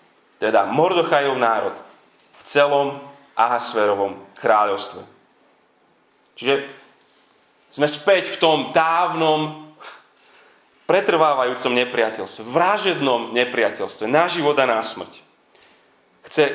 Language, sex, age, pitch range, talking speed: Slovak, male, 30-49, 125-165 Hz, 85 wpm